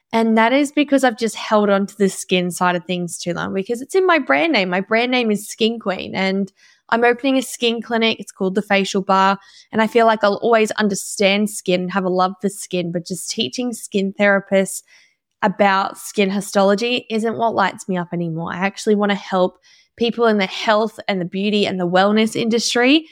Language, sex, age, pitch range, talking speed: English, female, 10-29, 195-245 Hz, 215 wpm